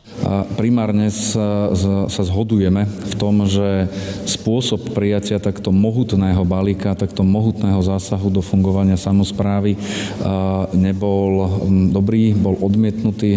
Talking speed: 105 wpm